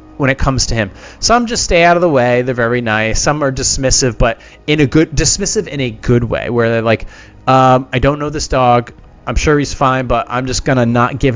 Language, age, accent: English, 30-49, American